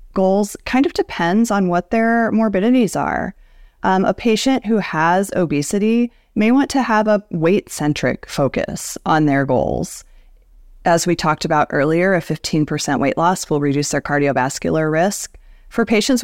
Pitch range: 150-210 Hz